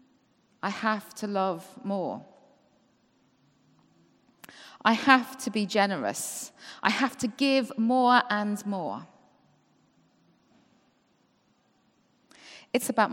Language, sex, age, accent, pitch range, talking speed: English, female, 40-59, British, 190-260 Hz, 85 wpm